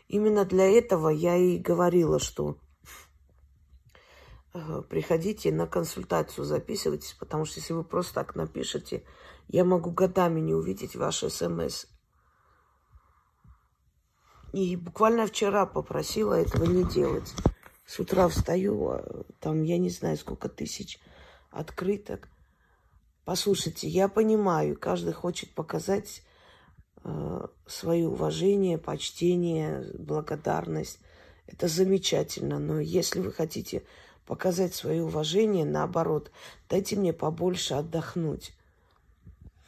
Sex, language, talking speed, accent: female, Russian, 100 wpm, native